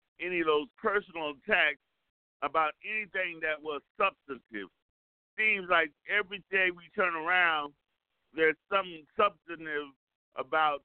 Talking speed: 115 wpm